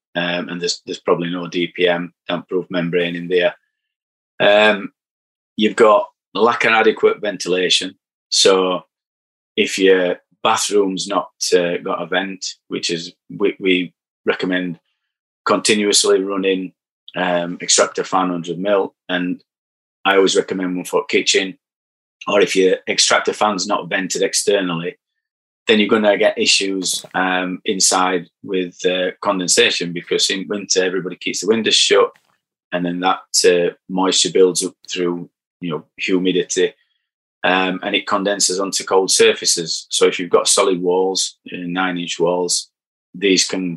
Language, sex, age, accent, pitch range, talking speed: English, male, 30-49, British, 90-105 Hz, 145 wpm